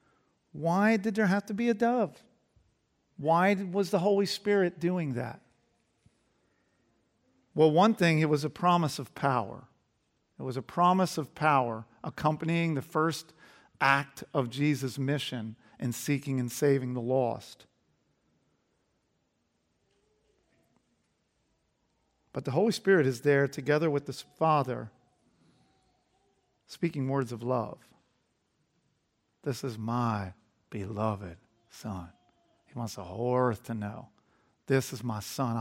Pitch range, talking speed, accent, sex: 120-160 Hz, 125 wpm, American, male